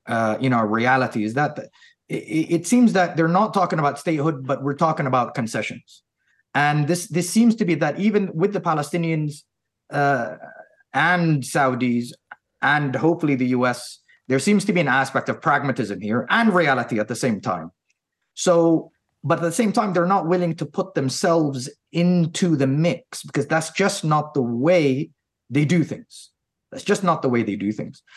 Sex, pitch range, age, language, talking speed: male, 125-175 Hz, 30-49, English, 180 wpm